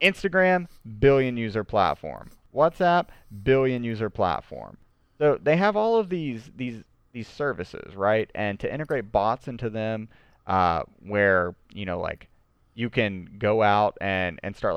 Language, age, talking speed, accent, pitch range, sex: English, 30-49, 145 wpm, American, 100-130 Hz, male